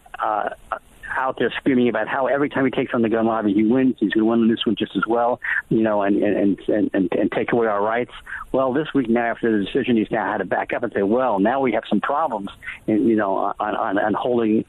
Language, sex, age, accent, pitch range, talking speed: English, male, 50-69, American, 110-125 Hz, 260 wpm